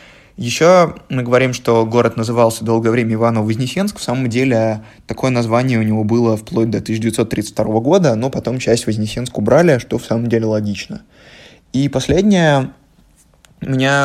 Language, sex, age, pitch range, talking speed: Russian, male, 20-39, 110-130 Hz, 145 wpm